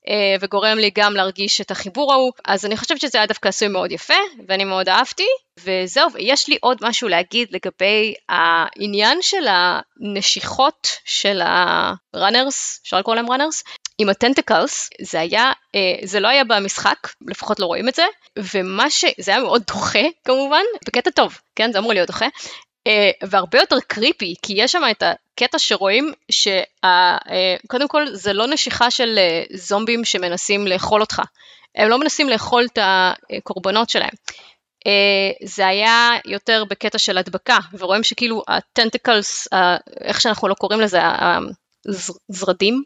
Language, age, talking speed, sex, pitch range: Hebrew, 20-39, 145 wpm, female, 190-250 Hz